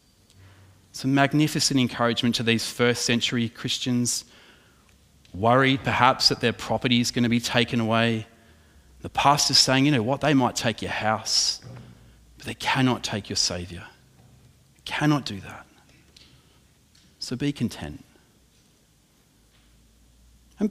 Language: English